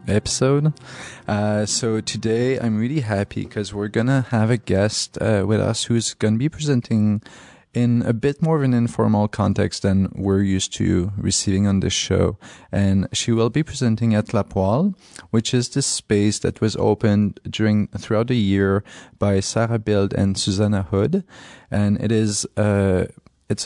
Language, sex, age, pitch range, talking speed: English, male, 30-49, 100-120 Hz, 170 wpm